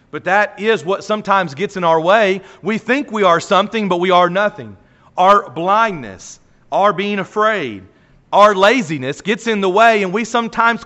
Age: 40-59